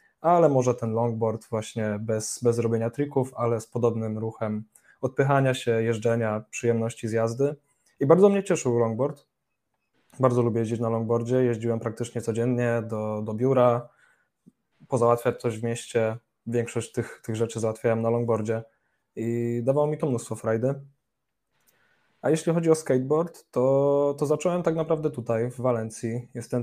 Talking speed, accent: 150 wpm, native